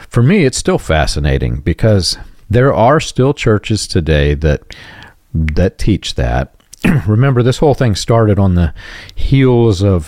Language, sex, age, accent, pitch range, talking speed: English, male, 40-59, American, 80-110 Hz, 145 wpm